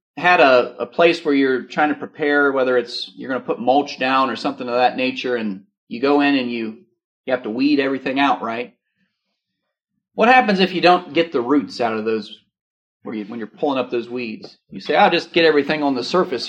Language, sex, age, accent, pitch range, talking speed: English, male, 40-59, American, 130-190 Hz, 220 wpm